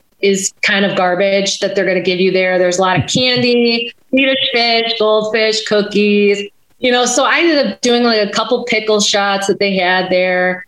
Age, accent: 30-49, American